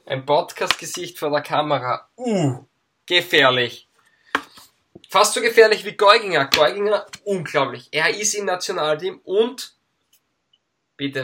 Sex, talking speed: male, 105 wpm